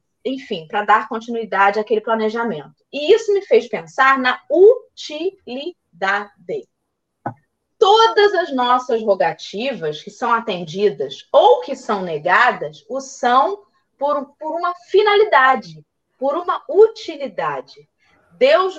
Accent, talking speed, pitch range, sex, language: Brazilian, 110 wpm, 205-305 Hz, female, Portuguese